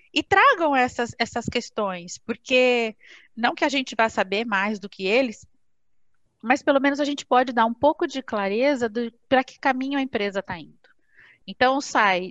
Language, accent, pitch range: Portuguese, Brazilian, 195-240 Hz